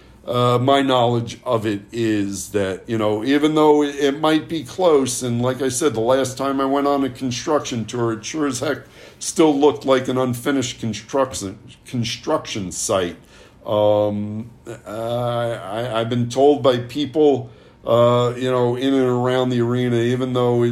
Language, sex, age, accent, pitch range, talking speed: English, male, 60-79, American, 110-150 Hz, 165 wpm